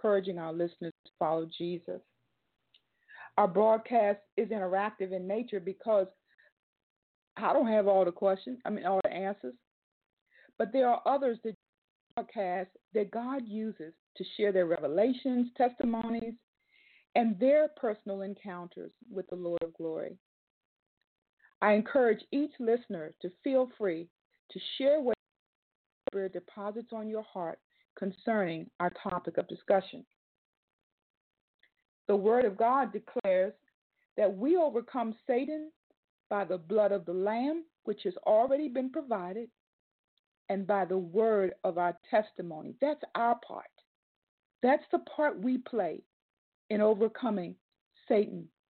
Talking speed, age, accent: 130 wpm, 50-69, American